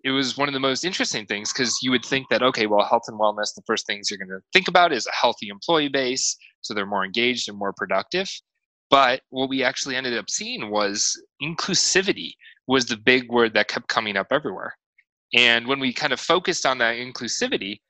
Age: 20-39